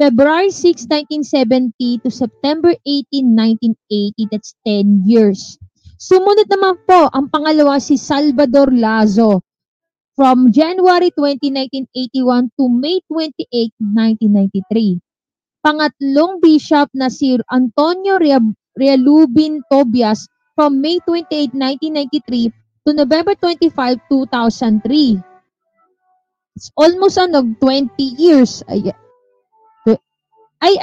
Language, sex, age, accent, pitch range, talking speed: Filipino, female, 20-39, native, 235-315 Hz, 95 wpm